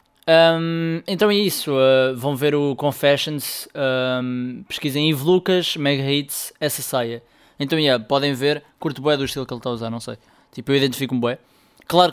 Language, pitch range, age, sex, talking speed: Portuguese, 130-160 Hz, 20-39, male, 195 wpm